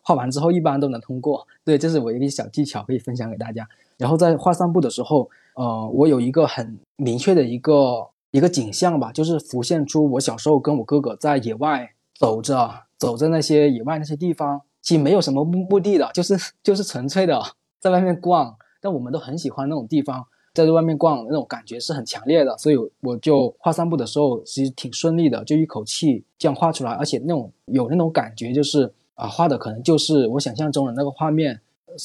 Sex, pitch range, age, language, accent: male, 130-165 Hz, 20-39, Chinese, native